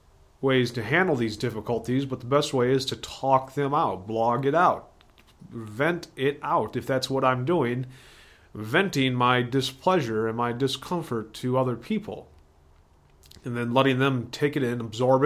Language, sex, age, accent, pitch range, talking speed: English, male, 30-49, American, 115-150 Hz, 165 wpm